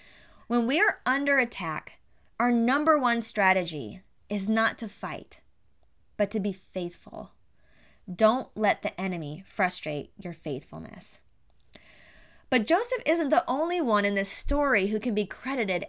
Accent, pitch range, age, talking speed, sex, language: American, 195-275 Hz, 20-39, 140 wpm, female, English